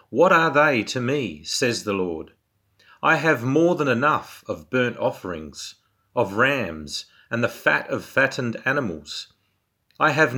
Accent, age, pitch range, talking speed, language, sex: Australian, 40-59, 100-140 Hz, 150 wpm, English, male